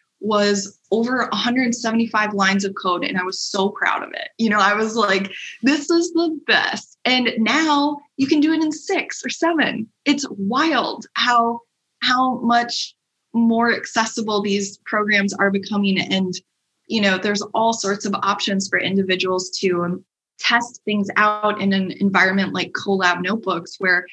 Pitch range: 195-230 Hz